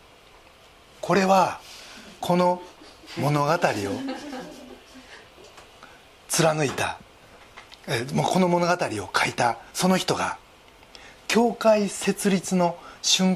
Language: Japanese